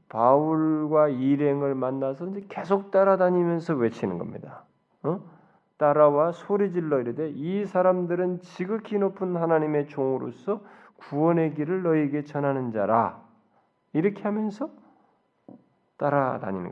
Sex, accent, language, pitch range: male, native, Korean, 135-185 Hz